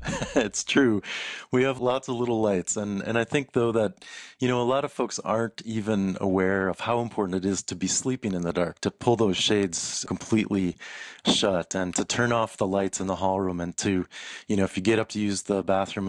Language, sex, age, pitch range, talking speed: English, male, 30-49, 95-105 Hz, 230 wpm